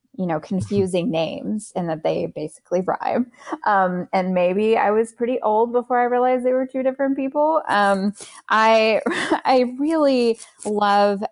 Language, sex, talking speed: English, female, 155 wpm